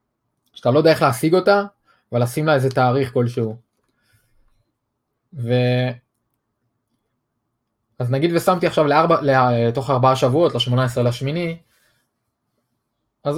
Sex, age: male, 20-39